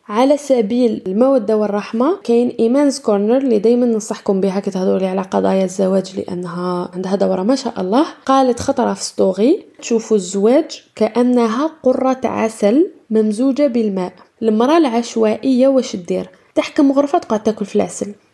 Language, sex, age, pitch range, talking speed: Arabic, female, 20-39, 210-270 Hz, 135 wpm